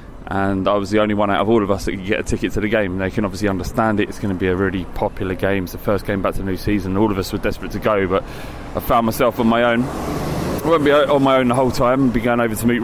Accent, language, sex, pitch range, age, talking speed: British, English, male, 100-120 Hz, 20-39, 330 wpm